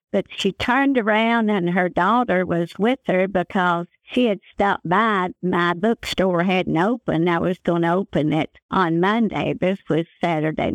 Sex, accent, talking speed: female, American, 165 wpm